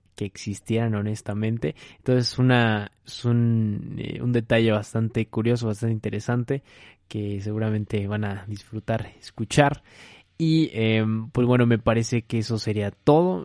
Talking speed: 130 wpm